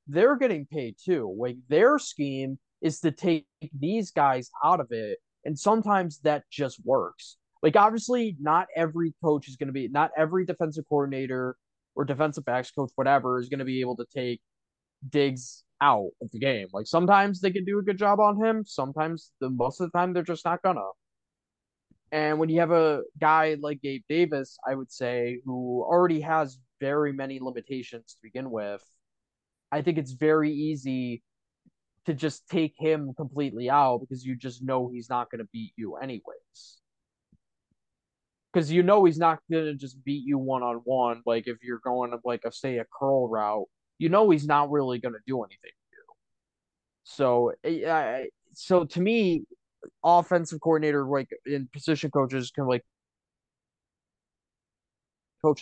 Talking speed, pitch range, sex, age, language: 175 wpm, 125-165 Hz, male, 20-39, English